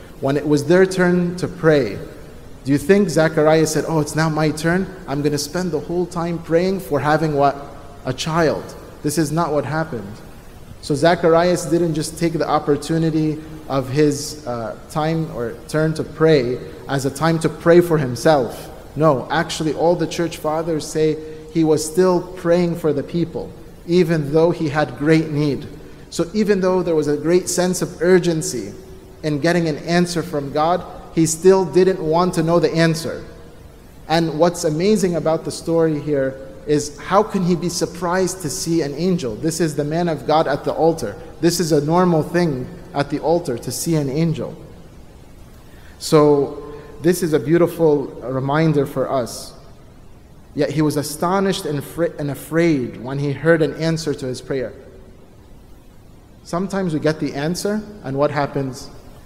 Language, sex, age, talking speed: English, male, 30-49, 170 wpm